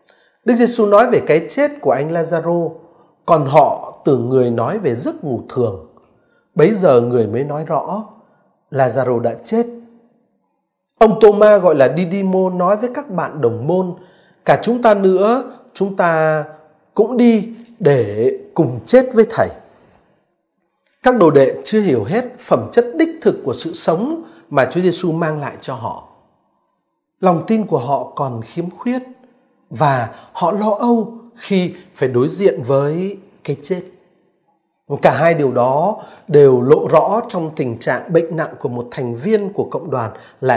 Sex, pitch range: male, 155-230 Hz